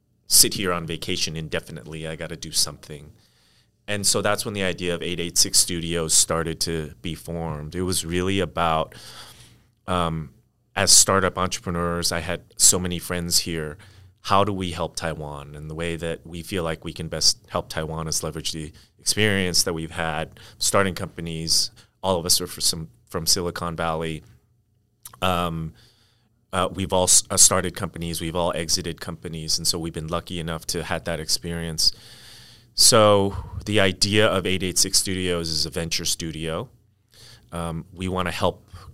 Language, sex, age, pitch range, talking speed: English, male, 30-49, 85-100 Hz, 165 wpm